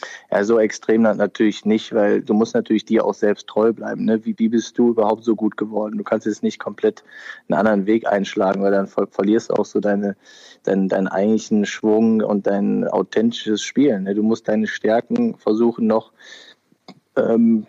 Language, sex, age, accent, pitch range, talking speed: German, male, 20-39, German, 105-115 Hz, 185 wpm